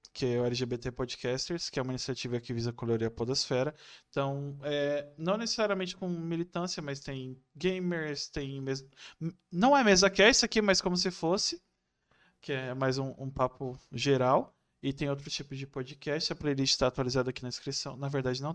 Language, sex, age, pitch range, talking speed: Portuguese, male, 20-39, 130-170 Hz, 190 wpm